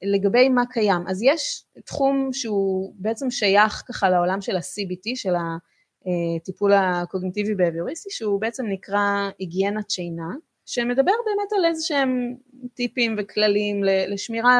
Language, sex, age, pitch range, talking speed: Hebrew, female, 20-39, 185-235 Hz, 125 wpm